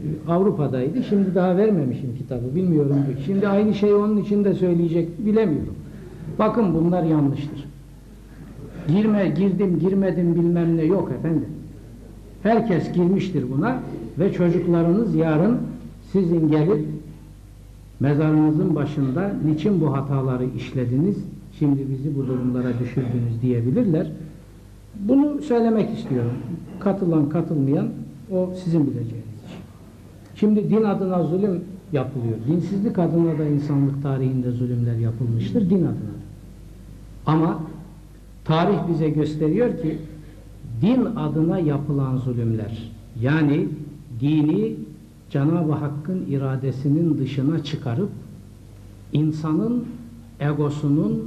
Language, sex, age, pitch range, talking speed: Turkish, male, 60-79, 125-175 Hz, 100 wpm